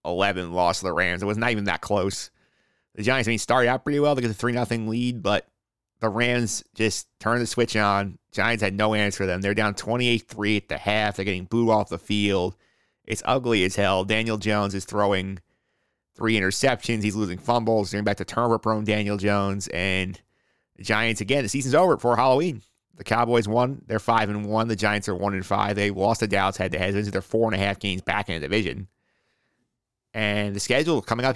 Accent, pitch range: American, 100-120 Hz